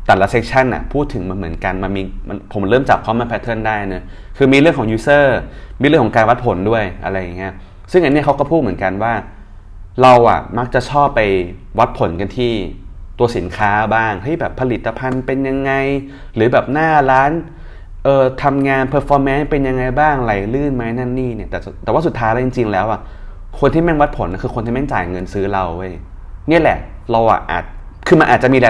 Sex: male